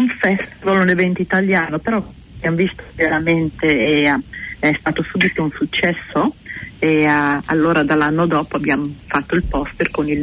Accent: native